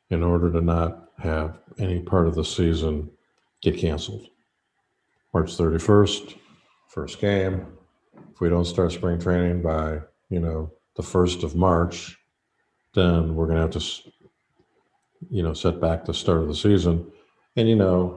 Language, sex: English, male